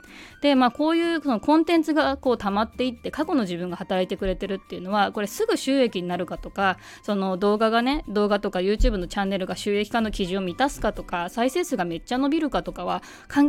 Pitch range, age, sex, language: 190-245 Hz, 20-39, female, Japanese